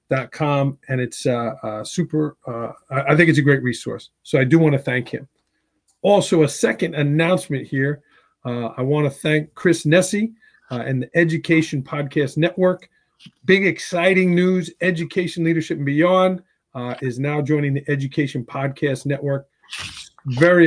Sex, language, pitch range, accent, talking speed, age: male, English, 130-175 Hz, American, 160 wpm, 40-59